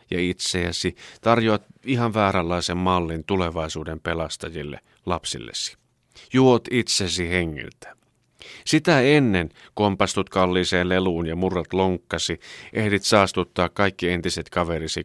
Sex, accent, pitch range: male, native, 85-110 Hz